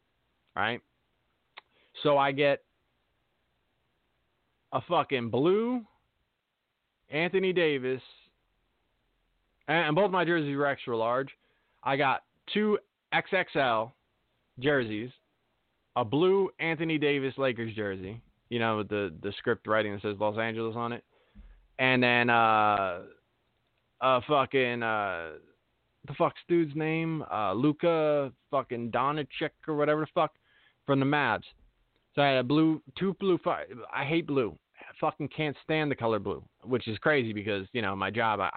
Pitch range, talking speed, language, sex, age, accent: 110-165 Hz, 140 wpm, English, male, 20-39, American